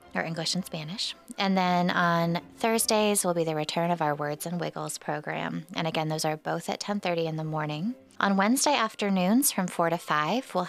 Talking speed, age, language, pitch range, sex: 200 wpm, 20-39, English, 165-225 Hz, female